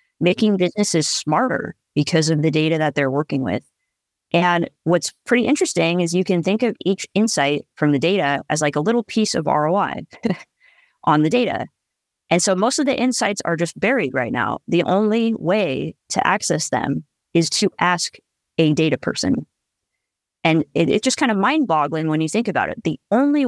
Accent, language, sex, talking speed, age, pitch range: American, English, female, 180 wpm, 20-39, 160-225 Hz